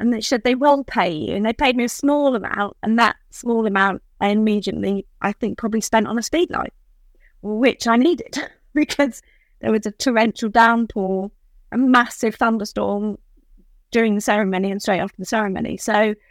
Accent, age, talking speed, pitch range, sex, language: British, 30-49, 180 wpm, 195-240 Hz, female, English